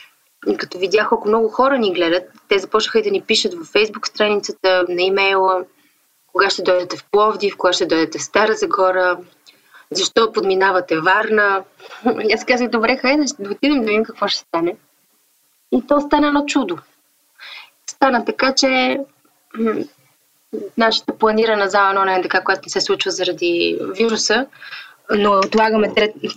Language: Bulgarian